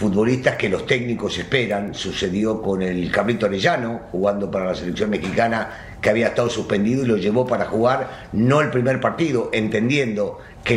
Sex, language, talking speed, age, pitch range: male, Spanish, 165 wpm, 50-69, 110-150 Hz